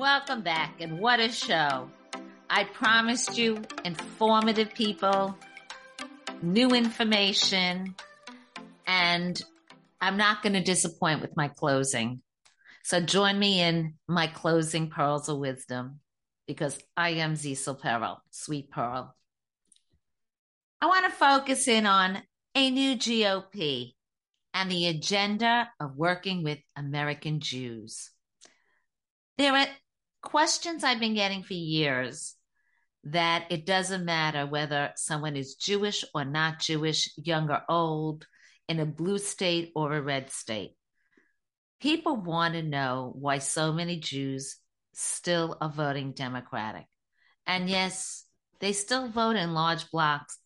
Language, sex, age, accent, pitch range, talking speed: English, female, 50-69, American, 150-210 Hz, 125 wpm